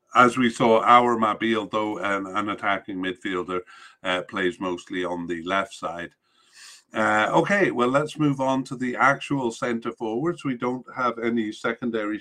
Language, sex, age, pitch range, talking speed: English, male, 50-69, 105-125 Hz, 155 wpm